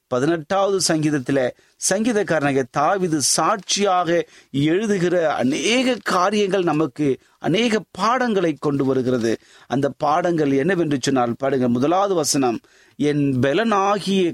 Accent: native